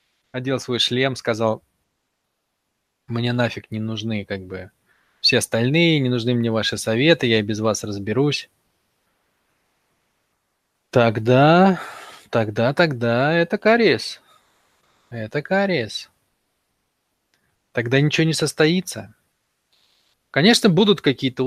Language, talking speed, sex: Russian, 100 wpm, male